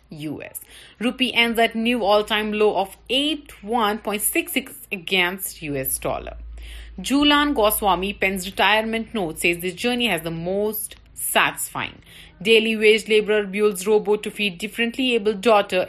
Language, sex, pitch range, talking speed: Urdu, female, 165-215 Hz, 130 wpm